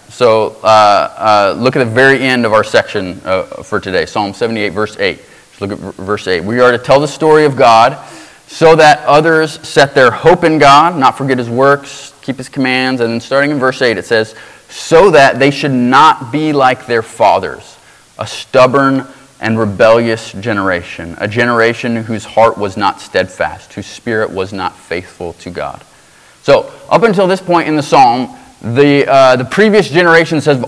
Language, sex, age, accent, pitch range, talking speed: English, male, 30-49, American, 120-150 Hz, 190 wpm